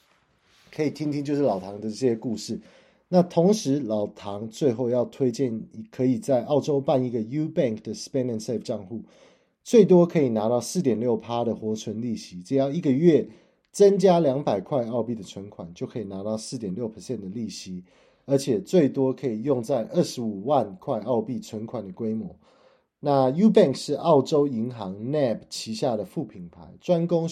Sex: male